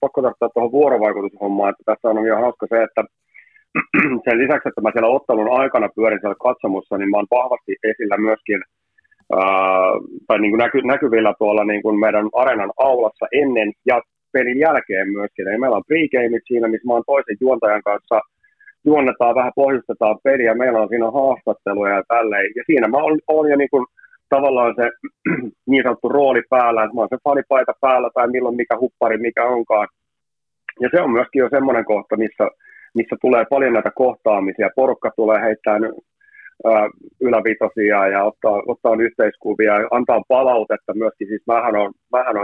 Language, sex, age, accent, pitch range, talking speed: Finnish, male, 30-49, native, 105-130 Hz, 165 wpm